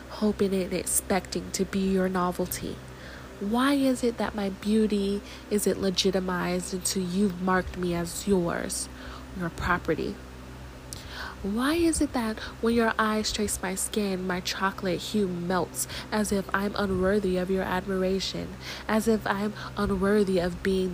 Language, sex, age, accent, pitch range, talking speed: English, female, 20-39, American, 165-205 Hz, 145 wpm